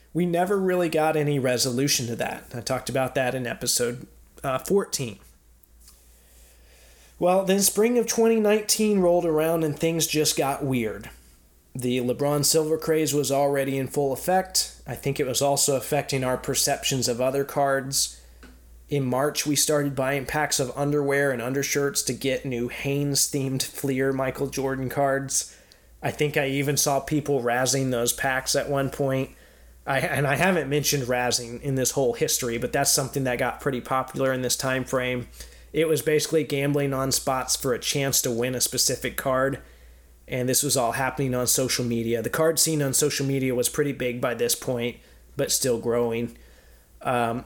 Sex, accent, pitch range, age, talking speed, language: male, American, 125-145 Hz, 20-39, 175 wpm, English